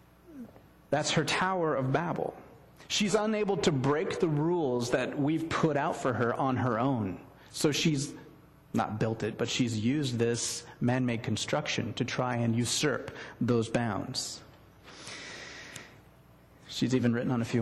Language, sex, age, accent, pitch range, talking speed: English, male, 30-49, American, 120-165 Hz, 145 wpm